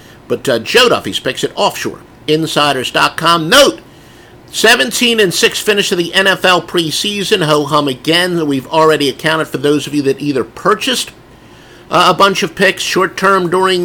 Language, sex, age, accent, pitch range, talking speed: English, male, 50-69, American, 130-170 Hz, 165 wpm